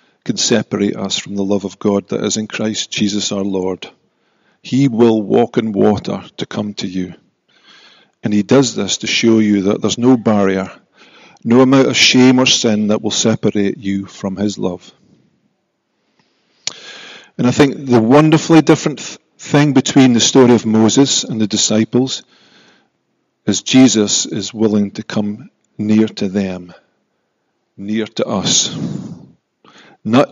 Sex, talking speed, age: male, 150 wpm, 50-69